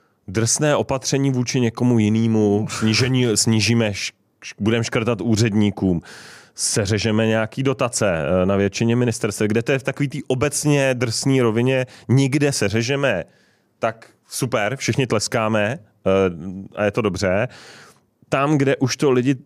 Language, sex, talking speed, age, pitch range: Czech, male, 125 wpm, 30-49, 100-120 Hz